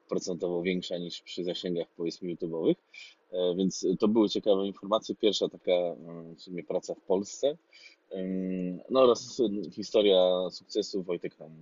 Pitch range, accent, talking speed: 80-95 Hz, native, 130 wpm